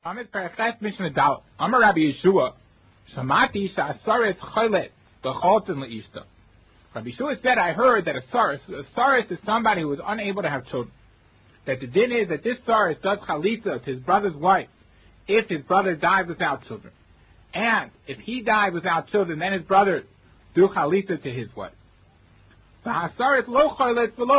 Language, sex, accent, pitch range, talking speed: English, male, American, 165-240 Hz, 135 wpm